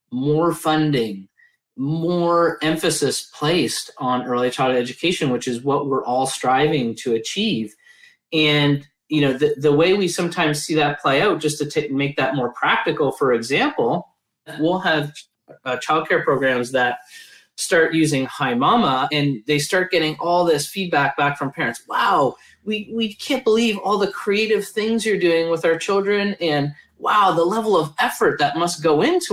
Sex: male